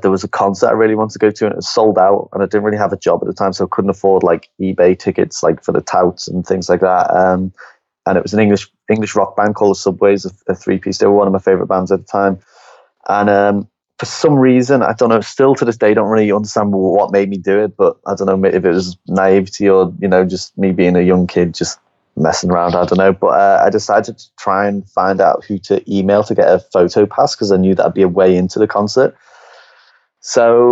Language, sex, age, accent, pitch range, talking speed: English, male, 20-39, British, 95-105 Hz, 265 wpm